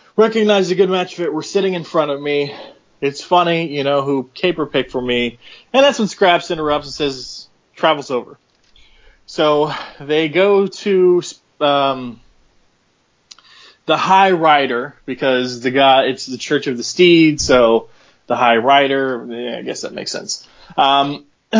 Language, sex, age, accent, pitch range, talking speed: English, male, 20-39, American, 135-180 Hz, 160 wpm